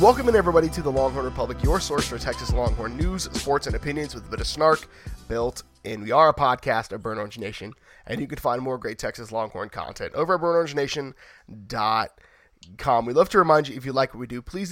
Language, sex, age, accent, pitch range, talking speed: English, male, 20-39, American, 120-155 Hz, 220 wpm